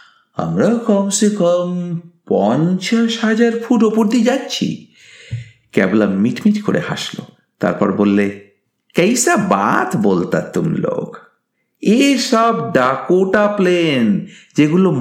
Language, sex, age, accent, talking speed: Bengali, male, 50-69, native, 60 wpm